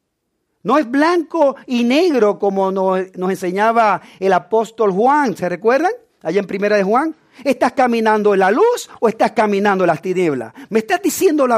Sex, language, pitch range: male, English, 185-260 Hz